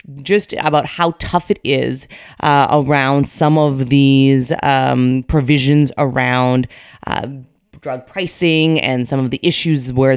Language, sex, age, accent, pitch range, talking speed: English, female, 30-49, American, 135-180 Hz, 135 wpm